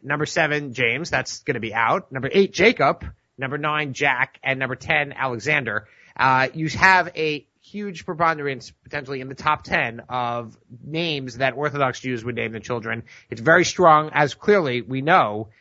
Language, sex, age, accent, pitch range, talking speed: English, male, 30-49, American, 120-165 Hz, 175 wpm